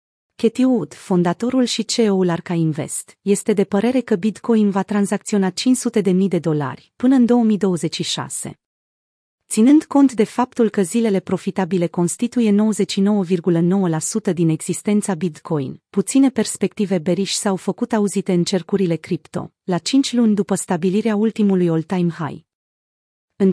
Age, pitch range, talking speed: 30-49, 175-225 Hz, 135 wpm